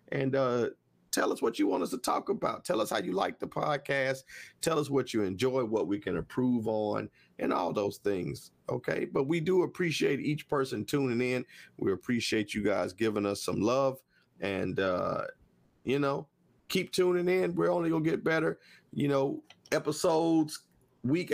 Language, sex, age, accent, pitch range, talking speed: English, male, 40-59, American, 110-140 Hz, 185 wpm